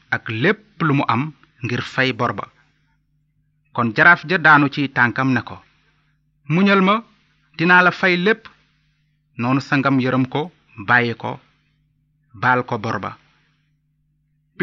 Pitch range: 130-155 Hz